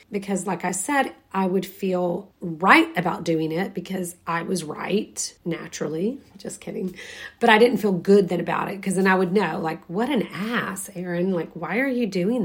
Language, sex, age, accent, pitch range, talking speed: English, female, 30-49, American, 175-210 Hz, 200 wpm